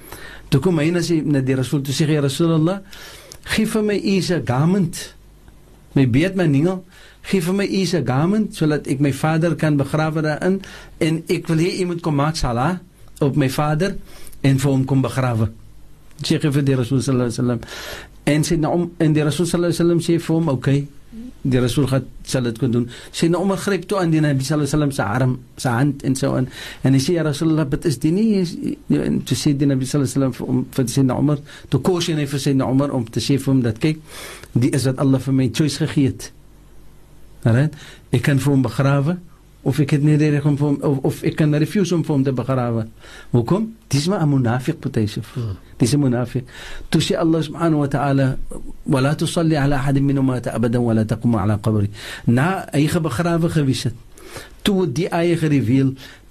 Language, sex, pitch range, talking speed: English, male, 130-165 Hz, 140 wpm